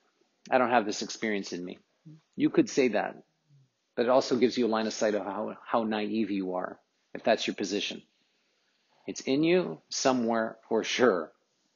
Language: English